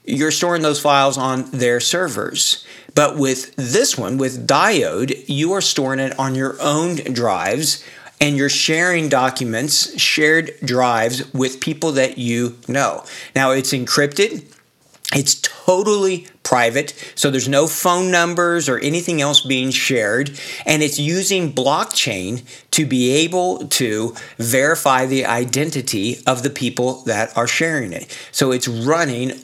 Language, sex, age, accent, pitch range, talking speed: English, male, 50-69, American, 130-155 Hz, 140 wpm